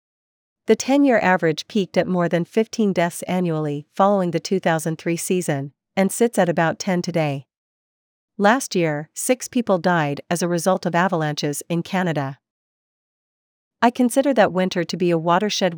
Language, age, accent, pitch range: English, 40-59, American, 160-195 Hz